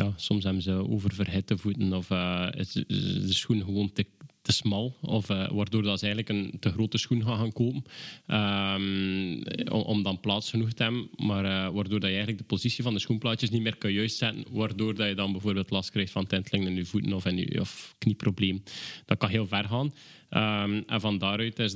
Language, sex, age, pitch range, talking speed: Dutch, male, 20-39, 95-110 Hz, 210 wpm